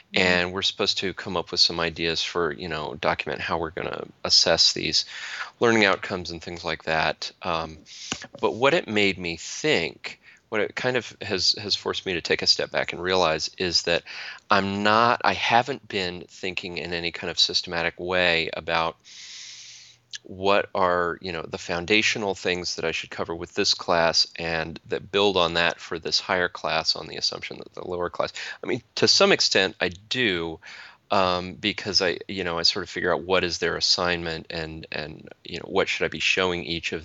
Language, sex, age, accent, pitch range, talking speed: English, male, 30-49, American, 85-90 Hz, 200 wpm